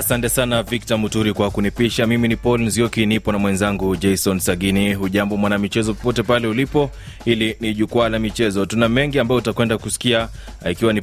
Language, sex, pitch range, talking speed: Swahili, male, 105-125 Hz, 175 wpm